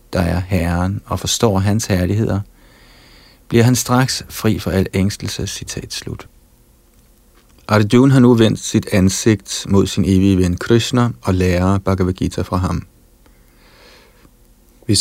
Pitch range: 90-110 Hz